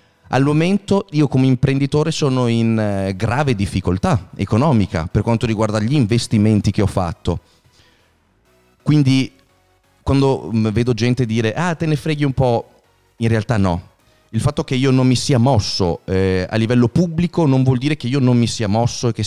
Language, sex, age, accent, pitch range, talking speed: Italian, male, 30-49, native, 95-130 Hz, 170 wpm